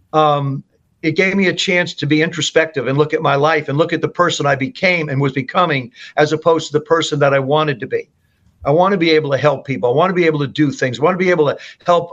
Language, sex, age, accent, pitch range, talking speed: English, male, 50-69, American, 145-165 Hz, 280 wpm